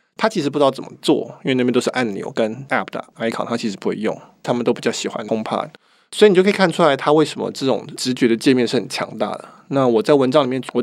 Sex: male